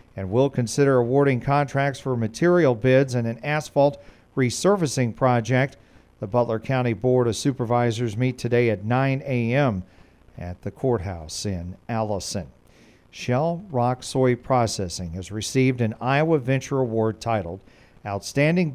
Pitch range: 115-140 Hz